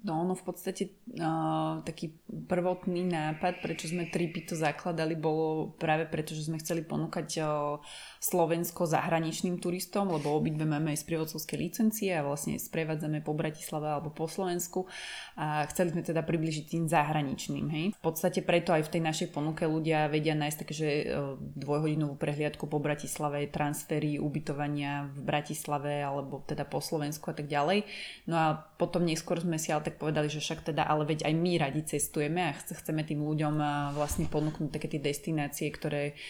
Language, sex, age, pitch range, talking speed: Slovak, female, 20-39, 150-170 Hz, 170 wpm